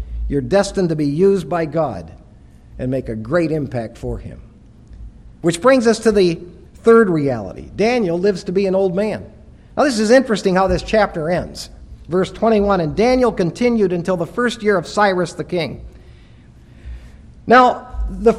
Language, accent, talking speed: English, American, 165 wpm